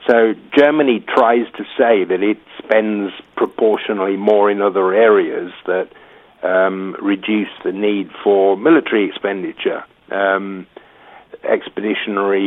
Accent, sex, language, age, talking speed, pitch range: British, male, English, 50-69, 110 wpm, 100-130 Hz